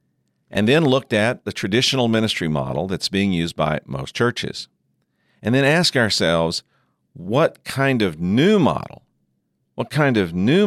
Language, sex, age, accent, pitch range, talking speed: English, male, 50-69, American, 80-125 Hz, 150 wpm